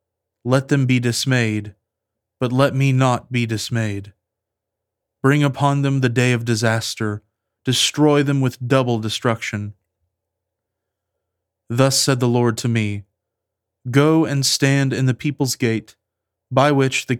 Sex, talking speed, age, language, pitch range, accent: male, 135 wpm, 20-39, English, 110-130 Hz, American